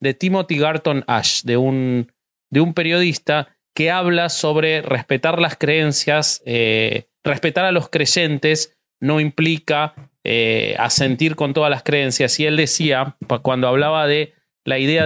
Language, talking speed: Spanish, 145 wpm